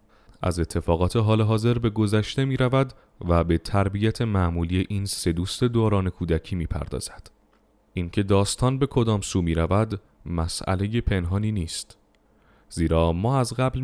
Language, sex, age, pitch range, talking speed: Persian, male, 30-49, 85-115 Hz, 135 wpm